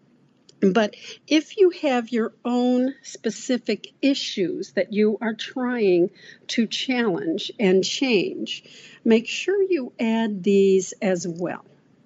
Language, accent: English, American